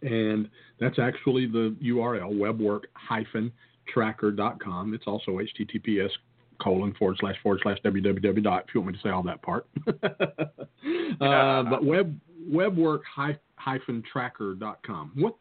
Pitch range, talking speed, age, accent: 105-135 Hz, 115 wpm, 50-69, American